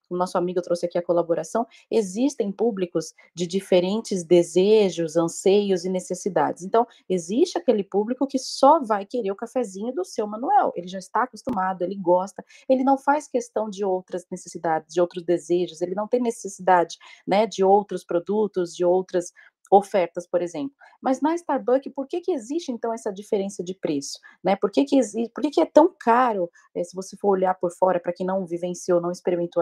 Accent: Brazilian